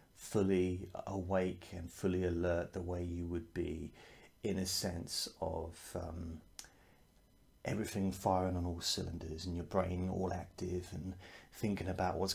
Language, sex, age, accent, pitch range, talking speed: English, male, 30-49, British, 85-95 Hz, 140 wpm